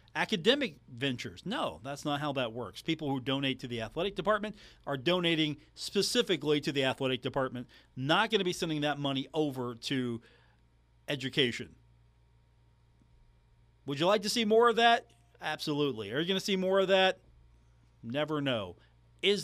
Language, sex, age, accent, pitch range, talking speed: English, male, 40-59, American, 115-175 Hz, 160 wpm